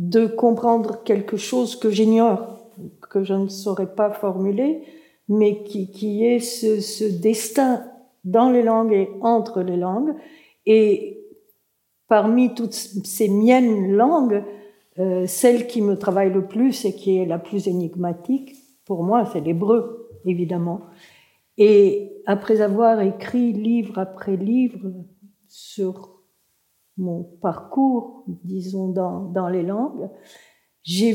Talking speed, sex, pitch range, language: 125 wpm, female, 190-235 Hz, French